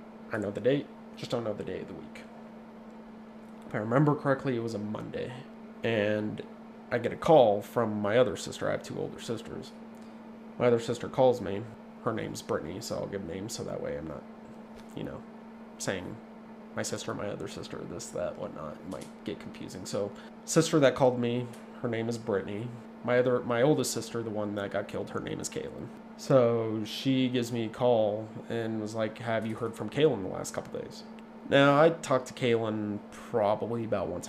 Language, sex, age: English, male, 20-39